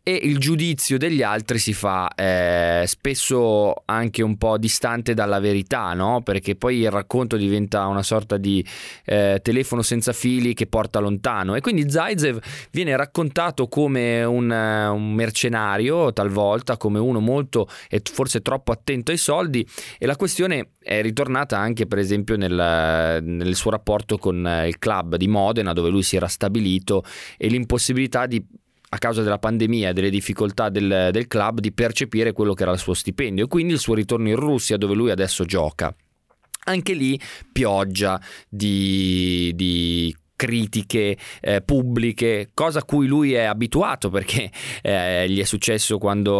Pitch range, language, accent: 100-120 Hz, Italian, native